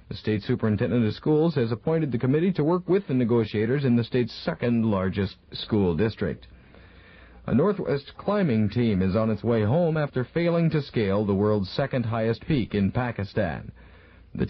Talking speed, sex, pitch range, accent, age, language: 175 wpm, male, 110-155 Hz, American, 50-69, English